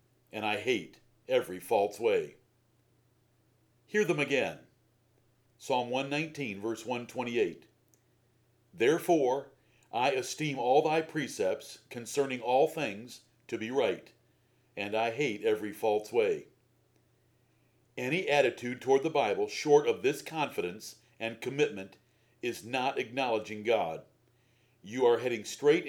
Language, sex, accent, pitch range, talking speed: English, male, American, 120-160 Hz, 115 wpm